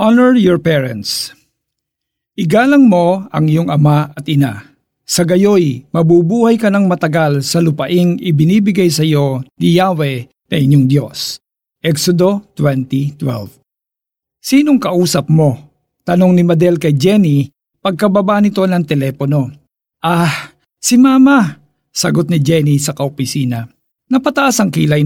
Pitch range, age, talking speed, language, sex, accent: 145-205 Hz, 50-69, 120 wpm, Filipino, male, native